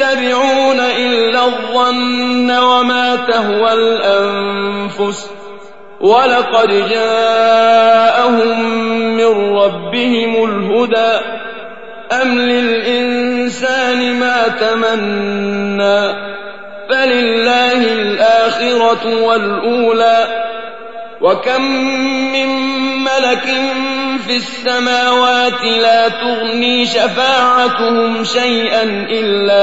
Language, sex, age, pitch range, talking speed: Arabic, male, 30-49, 205-245 Hz, 55 wpm